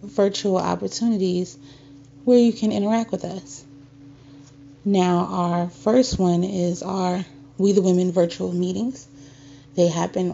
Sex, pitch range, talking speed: female, 140-190 Hz, 120 wpm